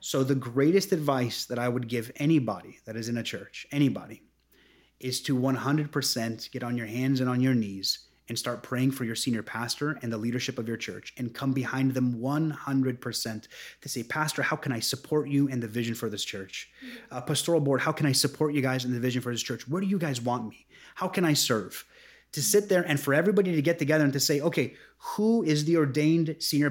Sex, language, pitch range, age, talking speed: male, English, 125-155 Hz, 30-49, 225 wpm